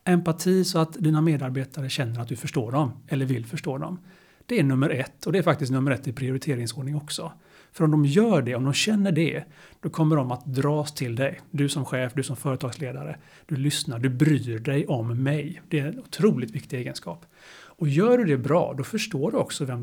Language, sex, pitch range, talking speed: Swedish, male, 135-165 Hz, 220 wpm